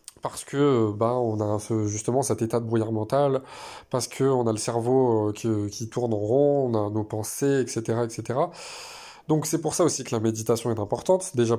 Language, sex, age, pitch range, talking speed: French, male, 20-39, 115-145 Hz, 195 wpm